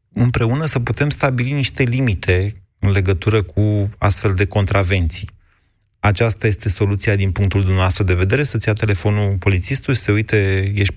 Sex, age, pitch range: male, 30-49, 95-125 Hz